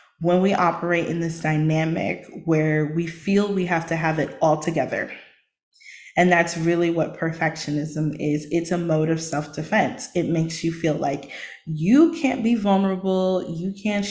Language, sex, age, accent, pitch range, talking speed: English, female, 20-39, American, 160-180 Hz, 160 wpm